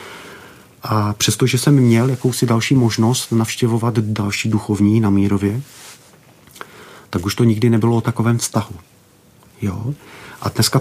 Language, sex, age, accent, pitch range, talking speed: Czech, male, 40-59, native, 100-115 Hz, 130 wpm